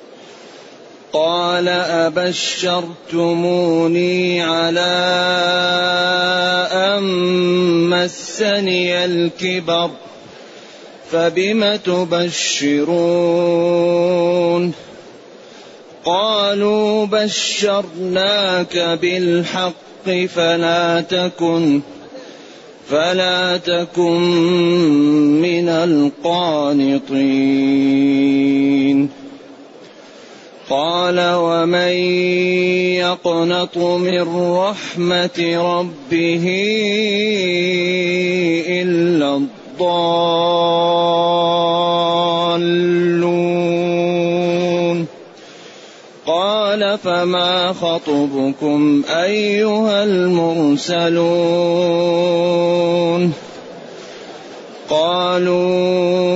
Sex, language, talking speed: male, Arabic, 35 wpm